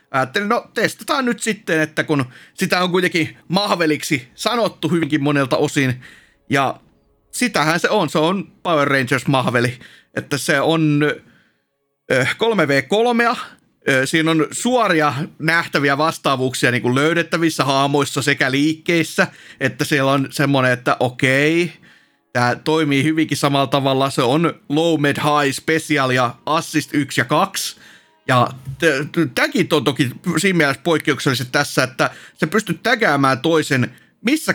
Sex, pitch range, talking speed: male, 135-170 Hz, 130 wpm